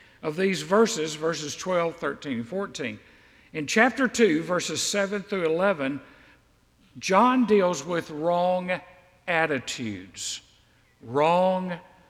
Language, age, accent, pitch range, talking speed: English, 60-79, American, 155-220 Hz, 105 wpm